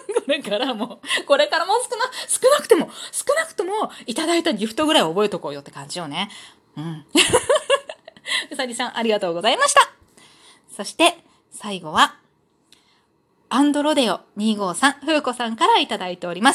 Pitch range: 205-305 Hz